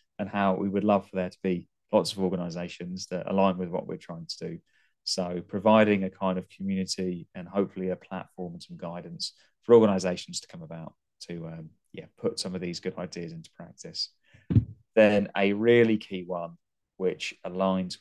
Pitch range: 90-105 Hz